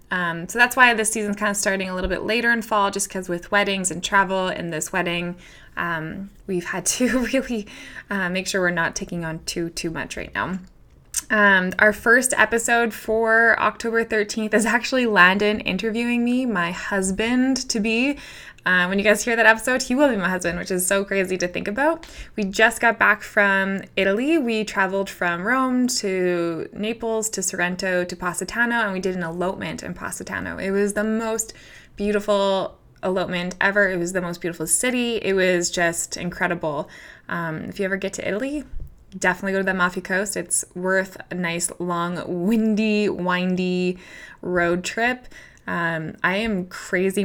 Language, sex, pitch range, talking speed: English, female, 175-215 Hz, 180 wpm